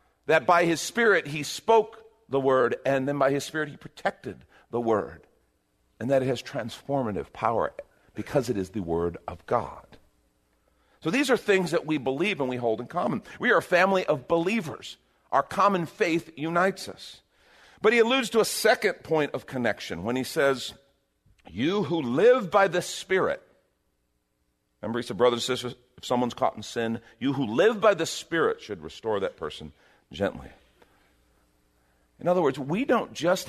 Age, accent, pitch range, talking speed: 50-69, American, 115-180 Hz, 175 wpm